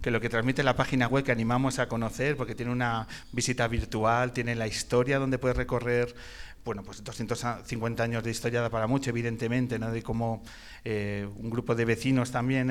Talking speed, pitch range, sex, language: 190 wpm, 115-130 Hz, male, Spanish